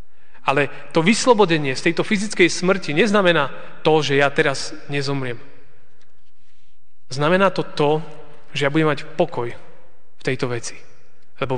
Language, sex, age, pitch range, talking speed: Slovak, male, 30-49, 125-155 Hz, 130 wpm